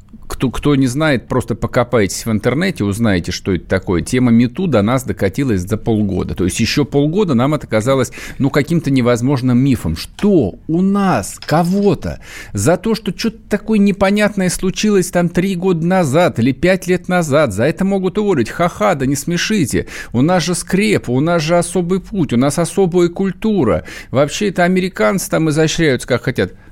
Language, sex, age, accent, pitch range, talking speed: Russian, male, 50-69, native, 110-175 Hz, 170 wpm